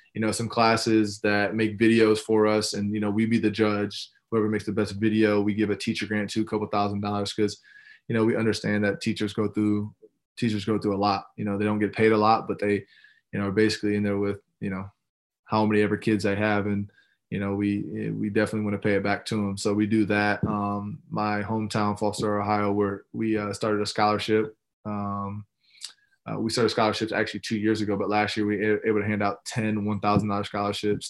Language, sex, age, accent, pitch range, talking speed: English, male, 20-39, American, 100-110 Hz, 230 wpm